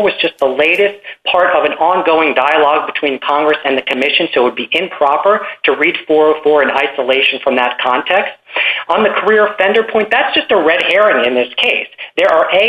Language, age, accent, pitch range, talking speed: English, 40-59, American, 155-205 Hz, 205 wpm